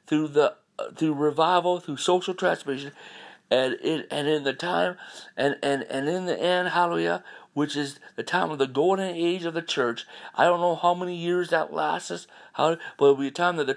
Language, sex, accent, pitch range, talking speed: English, male, American, 125-160 Hz, 215 wpm